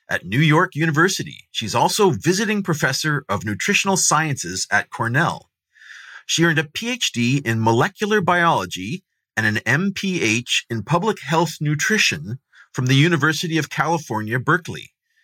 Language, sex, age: English, male, 30-49